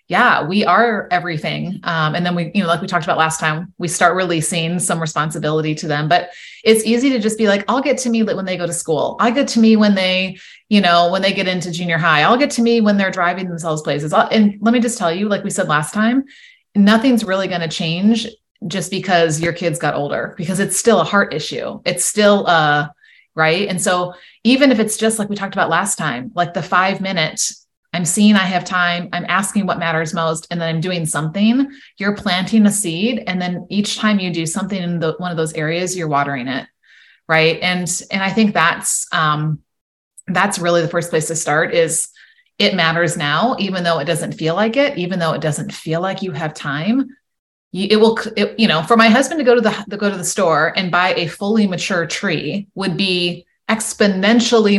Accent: American